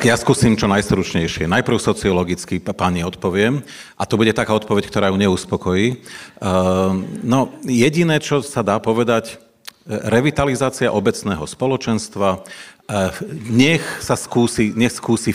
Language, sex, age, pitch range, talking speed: Slovak, male, 40-59, 100-125 Hz, 115 wpm